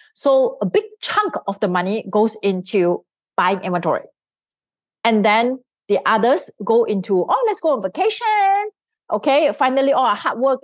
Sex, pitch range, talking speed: female, 175-245 Hz, 160 wpm